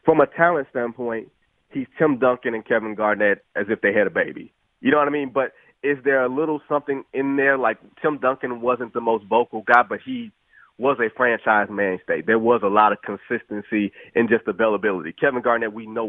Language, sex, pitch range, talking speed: English, male, 115-150 Hz, 215 wpm